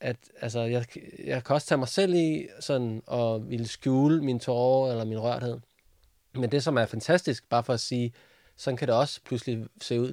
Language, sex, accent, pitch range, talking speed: Danish, male, native, 115-140 Hz, 205 wpm